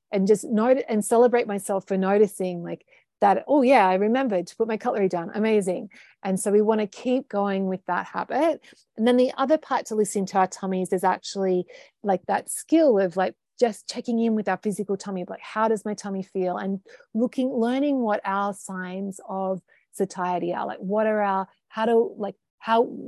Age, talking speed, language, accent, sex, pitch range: 30-49, 200 wpm, English, Australian, female, 185-225 Hz